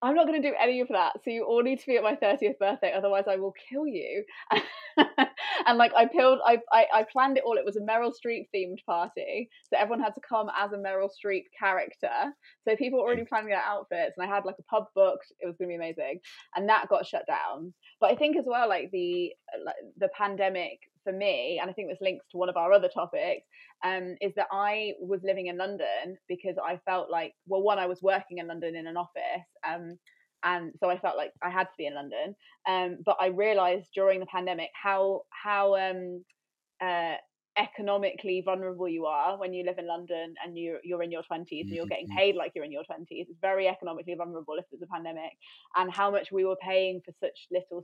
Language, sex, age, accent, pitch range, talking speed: English, female, 20-39, British, 180-220 Hz, 230 wpm